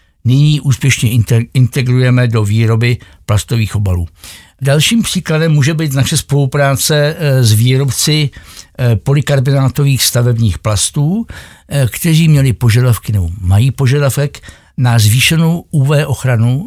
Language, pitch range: Czech, 110-145 Hz